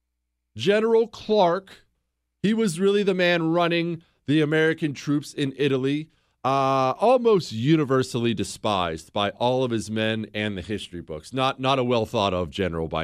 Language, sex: English, male